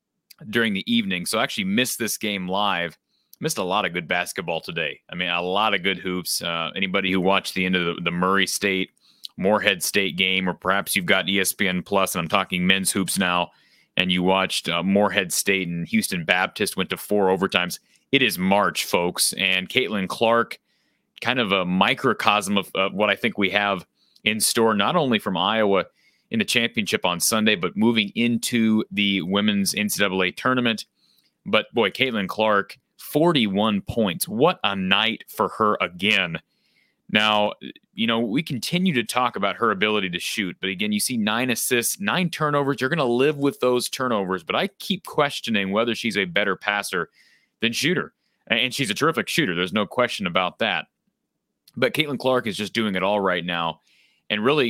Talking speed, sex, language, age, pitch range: 190 wpm, male, English, 30-49, 95-120 Hz